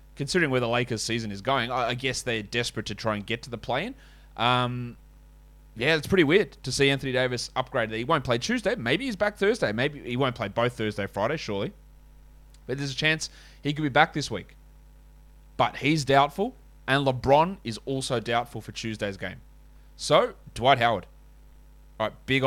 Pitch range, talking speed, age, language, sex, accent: 115-140 Hz, 190 wpm, 20-39, English, male, Australian